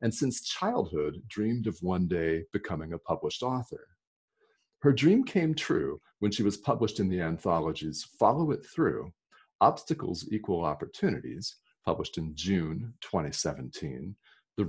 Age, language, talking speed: 40-59, English, 135 wpm